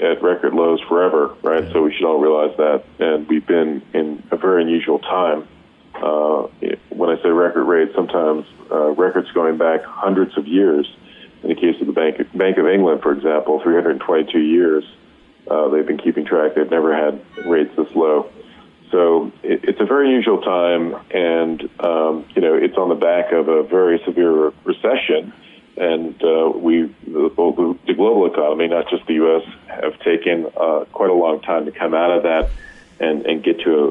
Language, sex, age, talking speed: English, male, 40-59, 185 wpm